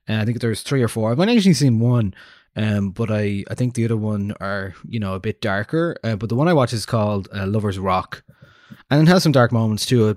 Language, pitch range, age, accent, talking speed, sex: English, 95-125 Hz, 20-39, Irish, 265 wpm, male